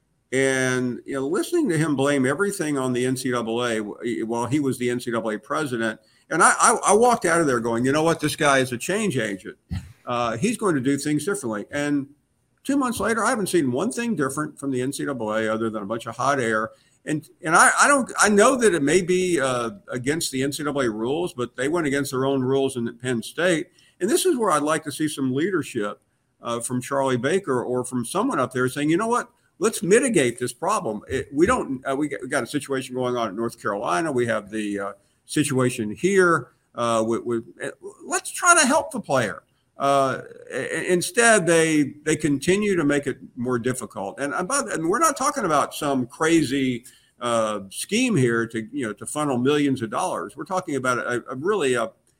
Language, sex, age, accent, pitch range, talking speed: English, male, 50-69, American, 120-160 Hz, 210 wpm